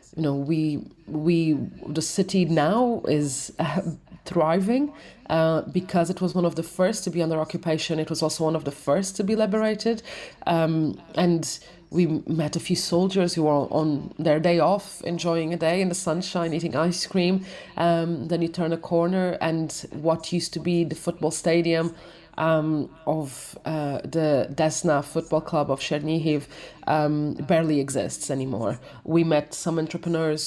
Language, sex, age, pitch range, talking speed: English, female, 30-49, 155-175 Hz, 165 wpm